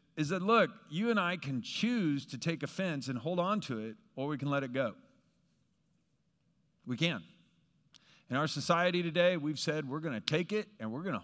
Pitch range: 130-185 Hz